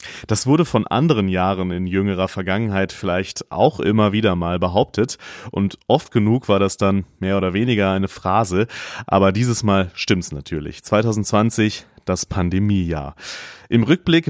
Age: 30-49